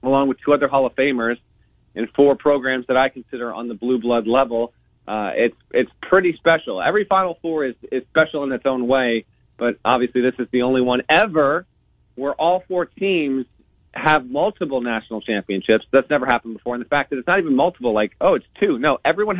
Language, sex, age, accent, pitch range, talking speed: English, male, 40-59, American, 115-145 Hz, 205 wpm